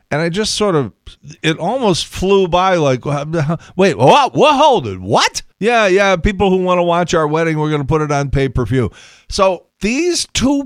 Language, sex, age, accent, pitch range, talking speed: English, male, 50-69, American, 100-155 Hz, 205 wpm